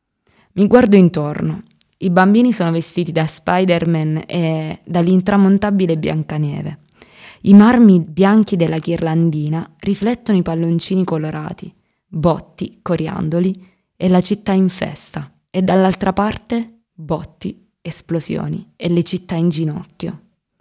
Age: 20-39